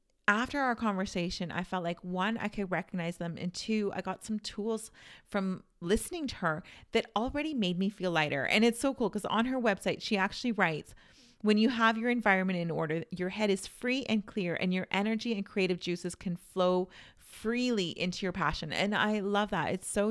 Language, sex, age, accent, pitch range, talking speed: English, female, 30-49, American, 170-210 Hz, 205 wpm